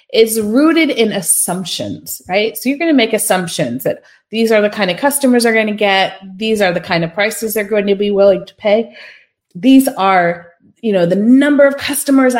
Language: English